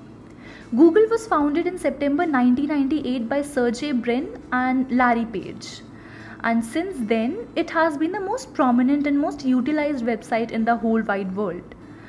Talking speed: 150 wpm